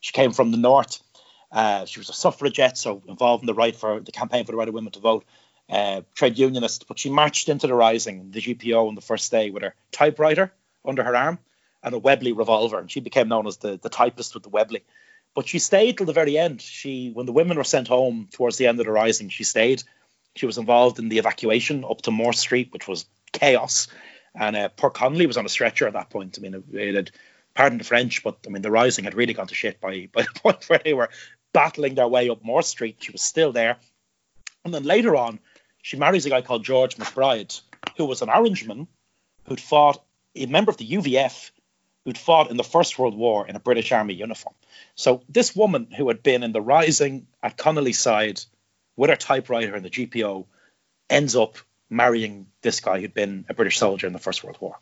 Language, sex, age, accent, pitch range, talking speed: English, male, 30-49, Irish, 110-140 Hz, 230 wpm